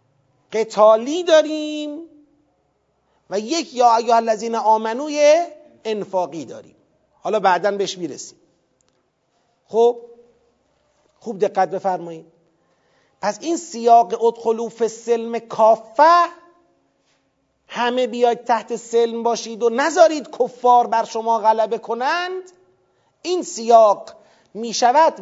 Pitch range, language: 215-295 Hz, Persian